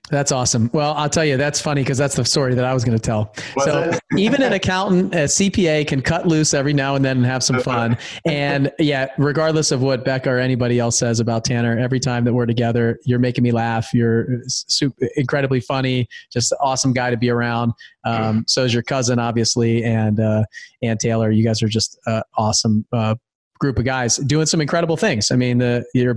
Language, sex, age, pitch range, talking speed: English, male, 30-49, 115-130 Hz, 220 wpm